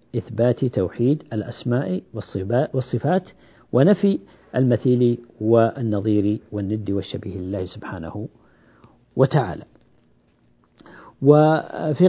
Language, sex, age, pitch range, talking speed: Arabic, male, 50-69, 110-155 Hz, 65 wpm